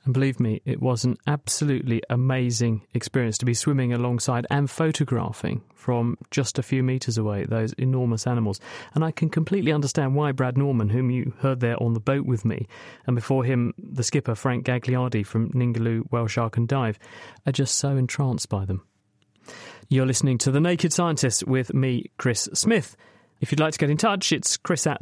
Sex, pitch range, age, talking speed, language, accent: male, 115-150 Hz, 30-49, 190 wpm, English, British